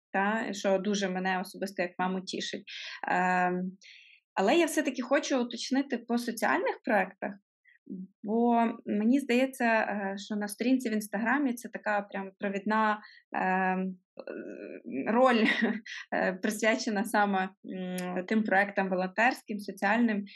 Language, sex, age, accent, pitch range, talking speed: Ukrainian, female, 20-39, native, 190-220 Hz, 110 wpm